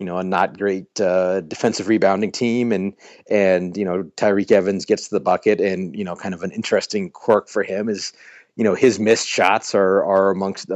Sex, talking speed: male, 210 wpm